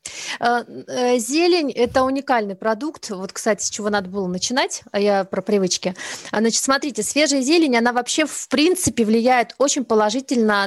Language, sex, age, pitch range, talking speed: Russian, female, 30-49, 210-260 Hz, 145 wpm